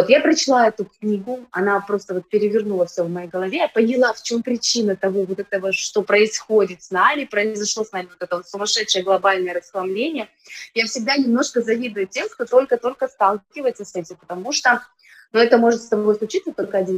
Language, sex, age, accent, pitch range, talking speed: Russian, female, 20-39, native, 190-245 Hz, 185 wpm